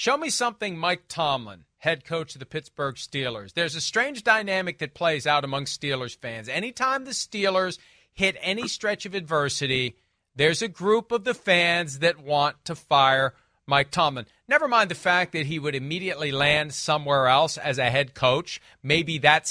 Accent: American